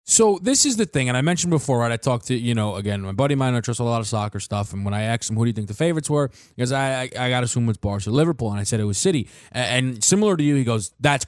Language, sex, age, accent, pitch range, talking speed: English, male, 20-39, American, 115-165 Hz, 340 wpm